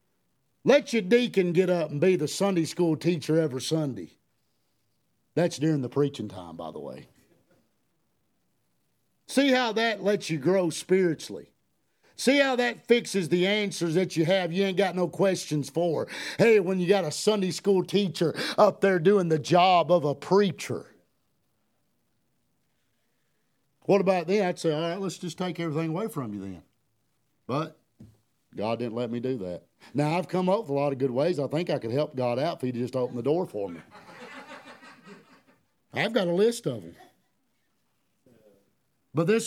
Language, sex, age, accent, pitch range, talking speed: English, male, 50-69, American, 140-195 Hz, 175 wpm